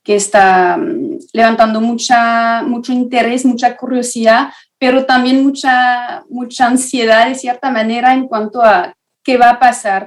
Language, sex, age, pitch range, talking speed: Spanish, female, 30-49, 215-255 Hz, 130 wpm